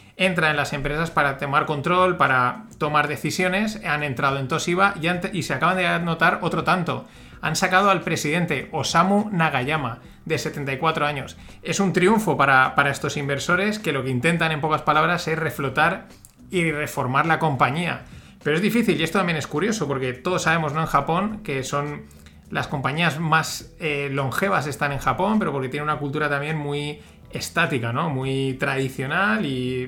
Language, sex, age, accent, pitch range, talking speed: Spanish, male, 30-49, Spanish, 140-180 Hz, 175 wpm